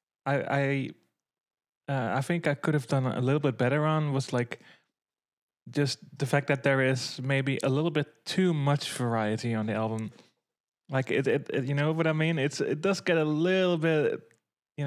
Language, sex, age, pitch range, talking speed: English, male, 20-39, 125-150 Hz, 195 wpm